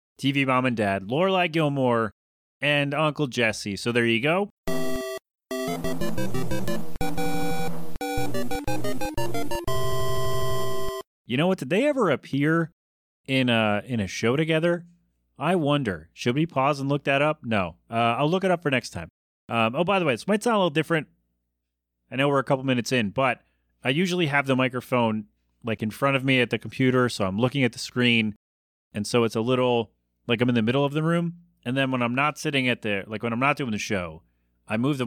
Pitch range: 105-140 Hz